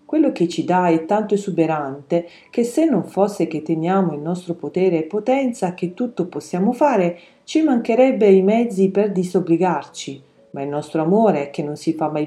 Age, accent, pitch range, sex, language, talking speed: 40-59, native, 160-220 Hz, female, Italian, 180 wpm